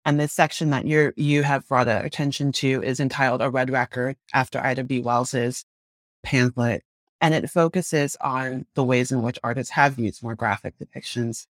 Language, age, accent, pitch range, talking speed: English, 30-49, American, 125-150 Hz, 175 wpm